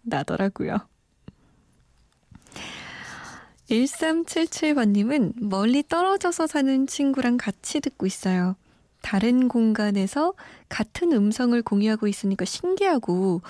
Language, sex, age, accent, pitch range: Korean, female, 20-39, native, 190-275 Hz